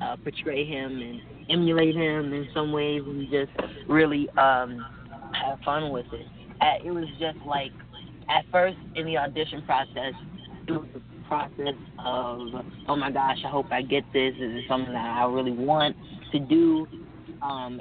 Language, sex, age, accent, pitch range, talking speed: English, female, 20-39, American, 125-145 Hz, 170 wpm